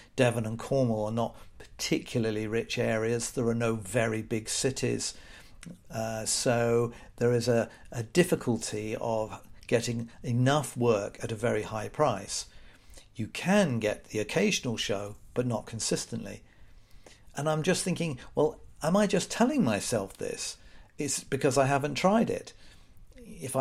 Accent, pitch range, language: British, 115-135 Hz, English